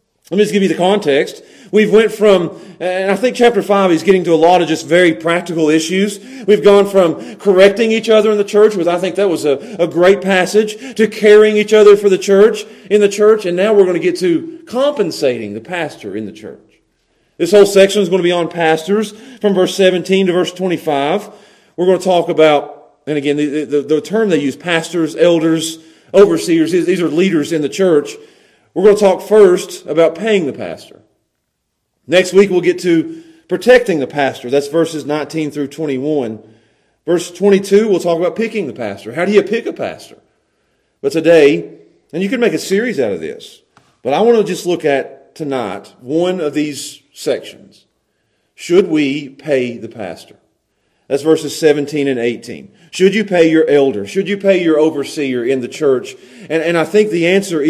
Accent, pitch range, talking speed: American, 160-210 Hz, 200 wpm